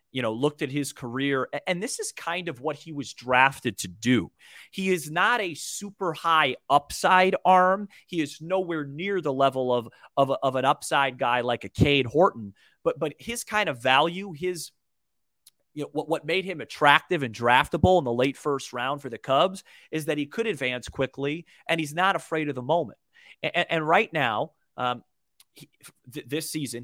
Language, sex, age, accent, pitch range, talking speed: English, male, 30-49, American, 130-180 Hz, 195 wpm